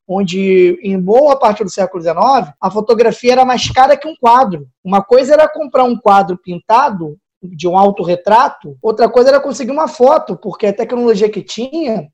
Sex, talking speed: male, 180 wpm